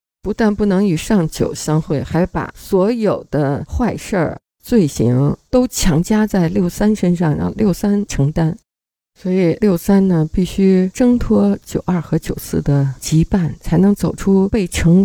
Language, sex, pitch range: Chinese, female, 155-195 Hz